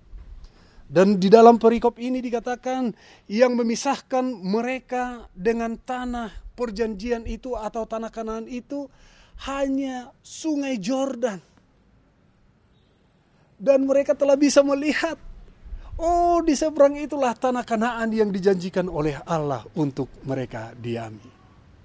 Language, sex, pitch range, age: Indonesian, male, 155-245 Hz, 30-49